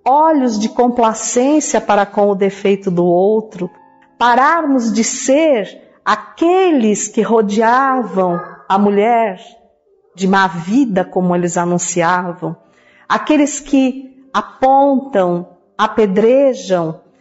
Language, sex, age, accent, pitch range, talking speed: Portuguese, female, 50-69, Brazilian, 200-280 Hz, 95 wpm